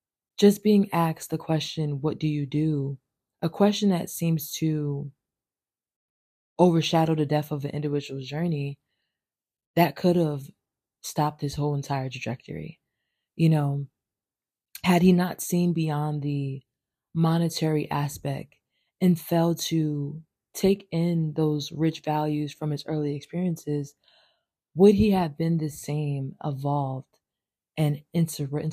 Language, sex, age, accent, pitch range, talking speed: English, female, 20-39, American, 145-170 Hz, 125 wpm